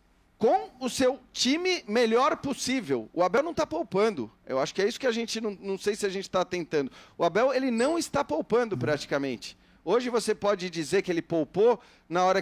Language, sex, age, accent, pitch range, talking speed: Portuguese, male, 40-59, Brazilian, 175-230 Hz, 210 wpm